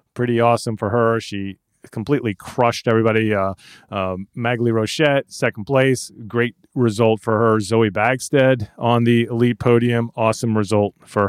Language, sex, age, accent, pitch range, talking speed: English, male, 30-49, American, 115-145 Hz, 145 wpm